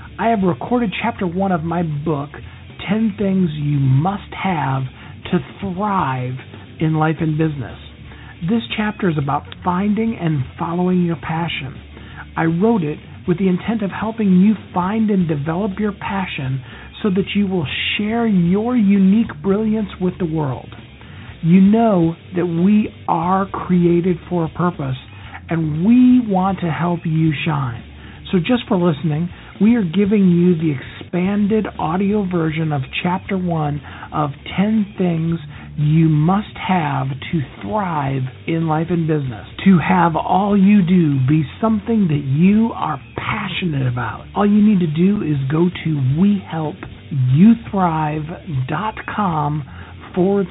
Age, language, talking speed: 50-69, English, 140 wpm